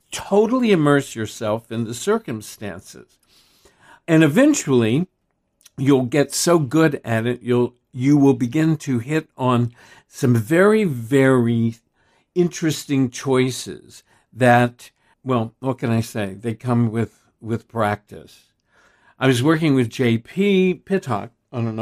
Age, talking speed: 60-79, 125 wpm